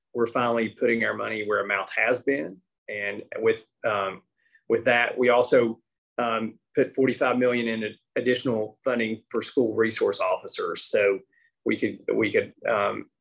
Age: 30-49